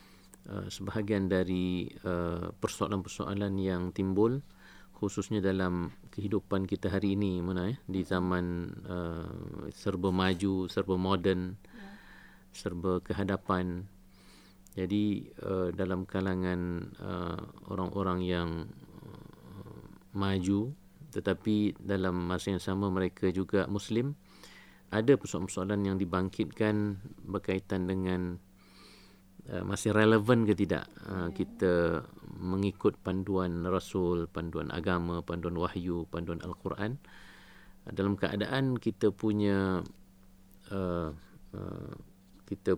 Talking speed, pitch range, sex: 95 wpm, 90-100 Hz, male